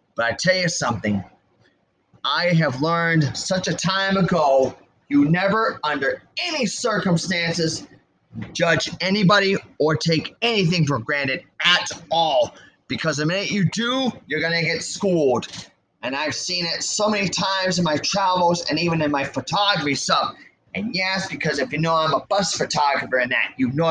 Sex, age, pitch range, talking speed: male, 30-49, 140-180 Hz, 165 wpm